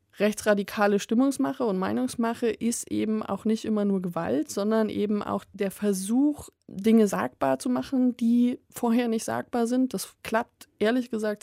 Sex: female